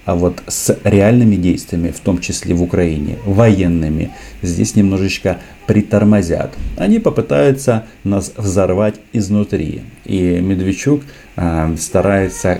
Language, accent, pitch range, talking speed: Russian, native, 90-110 Hz, 105 wpm